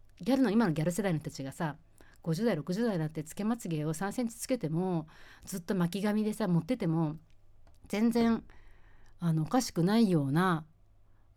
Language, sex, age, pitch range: Japanese, female, 40-59, 135-225 Hz